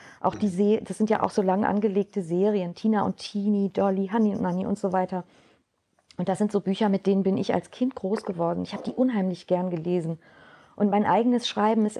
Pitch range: 190-220 Hz